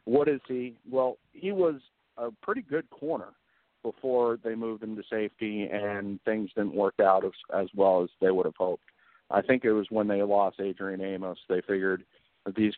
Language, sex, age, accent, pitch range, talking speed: English, male, 50-69, American, 95-115 Hz, 190 wpm